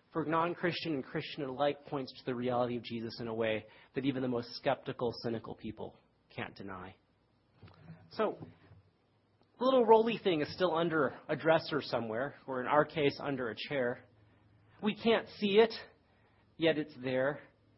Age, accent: 40-59, American